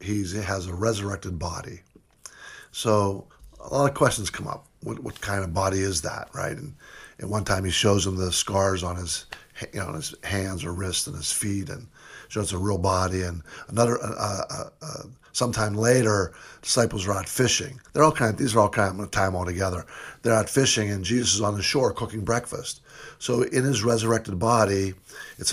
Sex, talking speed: male, 205 wpm